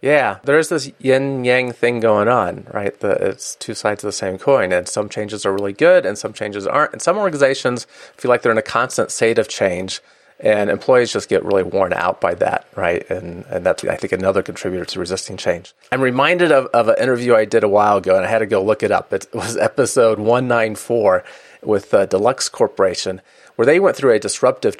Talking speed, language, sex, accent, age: 215 wpm, English, male, American, 30-49